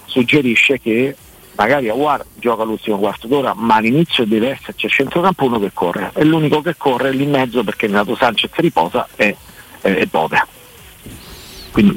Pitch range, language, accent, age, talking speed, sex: 105-135 Hz, Italian, native, 50-69, 165 wpm, male